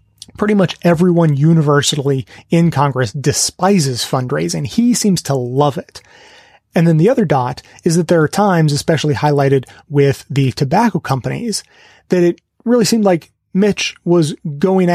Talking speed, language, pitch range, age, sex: 150 wpm, English, 140-180 Hz, 30-49, male